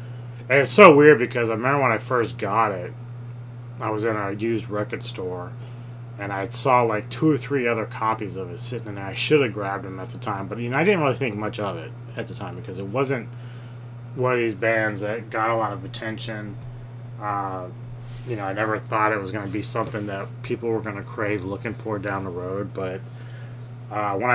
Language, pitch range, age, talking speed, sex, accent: English, 110-125 Hz, 30-49, 230 wpm, male, American